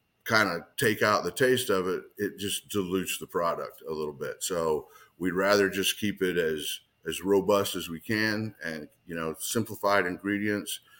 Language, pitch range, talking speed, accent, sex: English, 90-110 Hz, 180 wpm, American, male